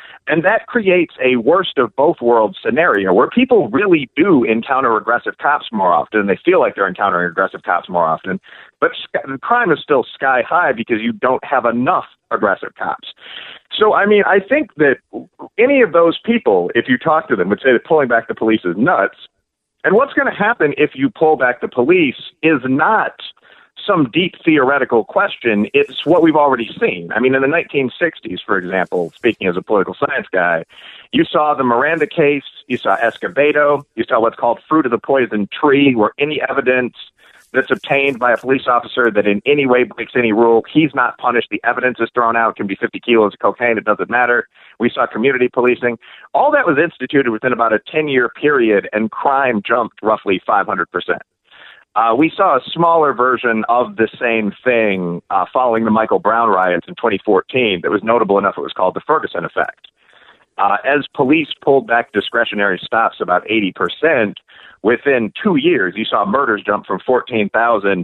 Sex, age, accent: male, 40-59, American